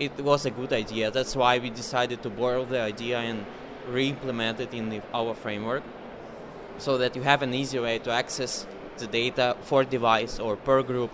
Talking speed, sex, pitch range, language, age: 195 wpm, male, 115-135 Hz, English, 20-39